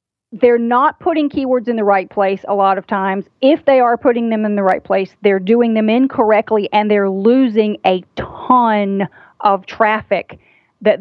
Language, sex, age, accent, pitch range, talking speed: English, female, 40-59, American, 200-245 Hz, 180 wpm